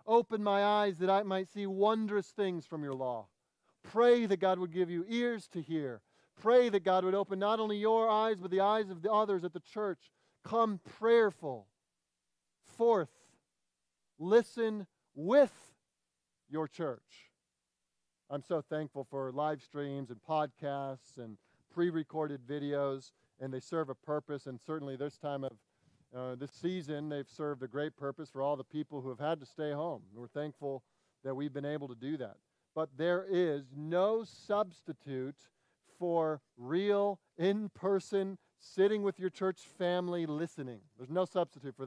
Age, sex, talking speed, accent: 40-59, male, 160 wpm, American